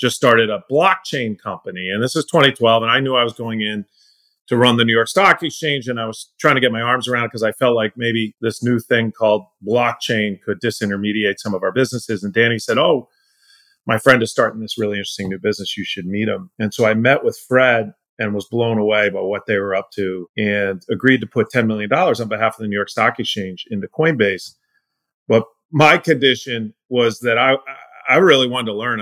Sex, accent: male, American